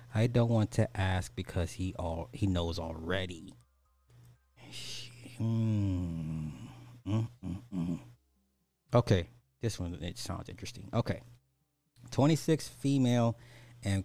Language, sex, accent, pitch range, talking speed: English, male, American, 95-120 Hz, 90 wpm